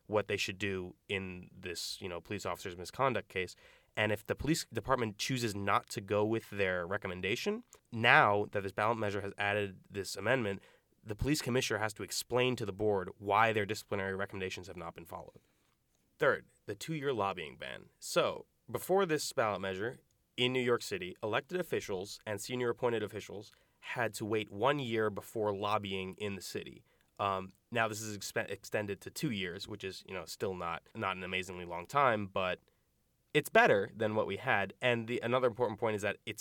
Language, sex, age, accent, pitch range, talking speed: English, male, 20-39, American, 95-120 Hz, 190 wpm